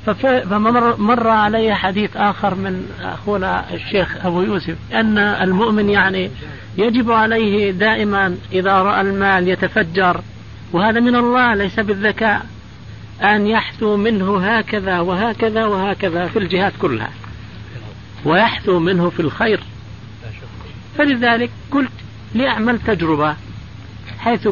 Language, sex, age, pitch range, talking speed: Arabic, male, 50-69, 150-220 Hz, 105 wpm